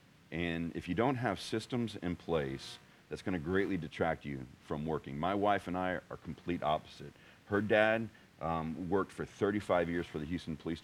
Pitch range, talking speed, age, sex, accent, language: 85-110 Hz, 190 wpm, 40-59, male, American, English